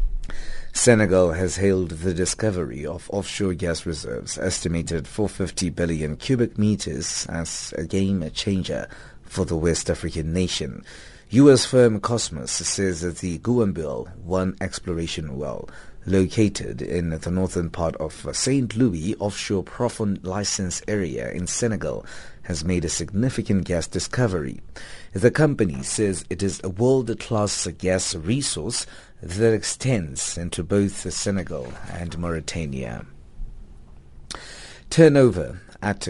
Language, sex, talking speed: English, male, 120 wpm